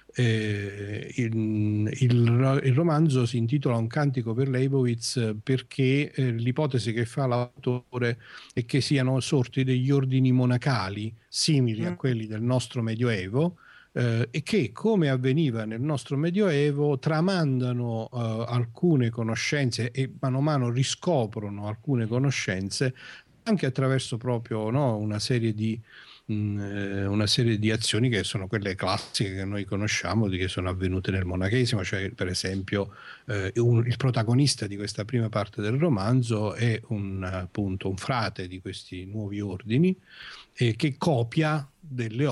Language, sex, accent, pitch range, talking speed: Italian, male, native, 105-130 Hz, 140 wpm